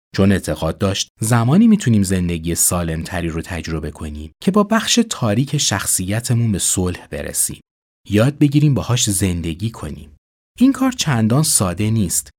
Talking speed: 135 wpm